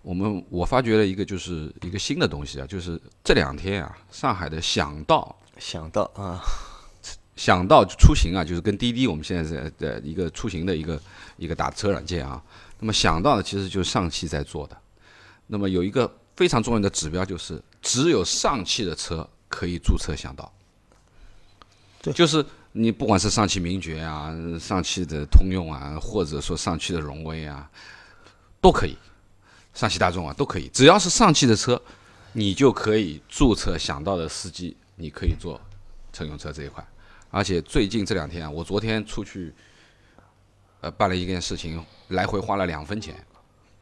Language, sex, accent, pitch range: Chinese, male, native, 85-110 Hz